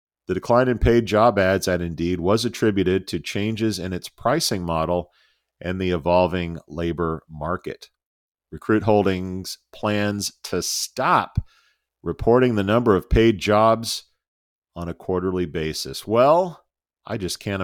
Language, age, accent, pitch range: English, 40-59, American, 85-105 Hz